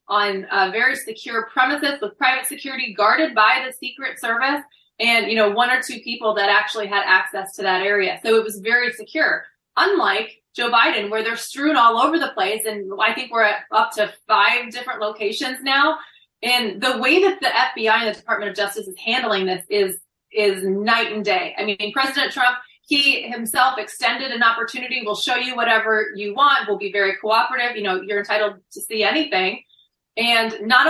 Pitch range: 215-285 Hz